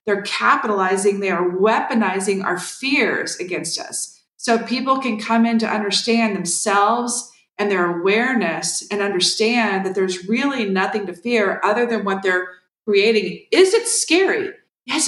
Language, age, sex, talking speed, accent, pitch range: English, 40-59, female, 145 wpm, American, 185-230 Hz